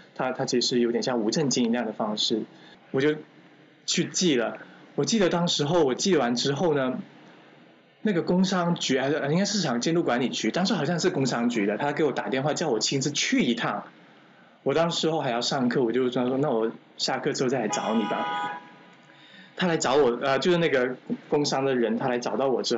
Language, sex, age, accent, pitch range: Chinese, male, 20-39, native, 120-170 Hz